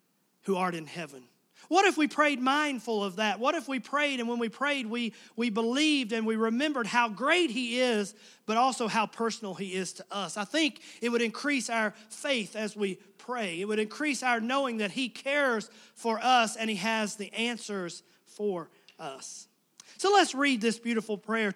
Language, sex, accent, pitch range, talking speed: English, male, American, 205-245 Hz, 195 wpm